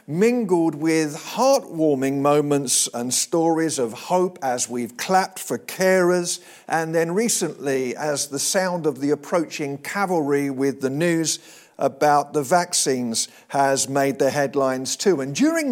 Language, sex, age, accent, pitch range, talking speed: English, male, 50-69, British, 150-190 Hz, 135 wpm